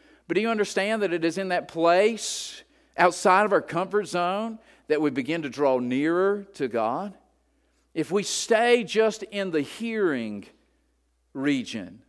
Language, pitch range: English, 150-245 Hz